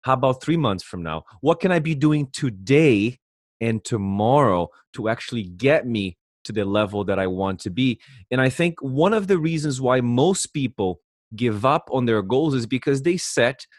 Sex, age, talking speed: male, 30-49, 195 wpm